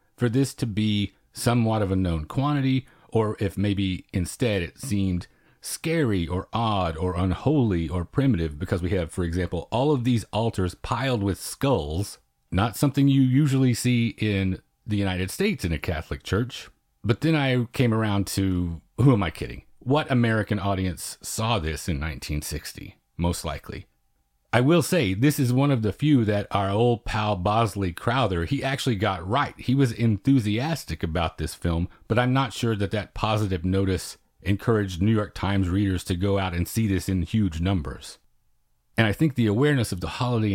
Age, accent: 40-59, American